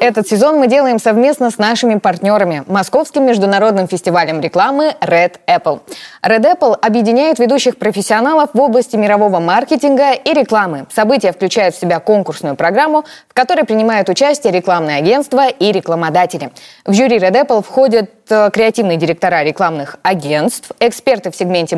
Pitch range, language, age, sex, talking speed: 180-255 Hz, Russian, 20-39, female, 140 wpm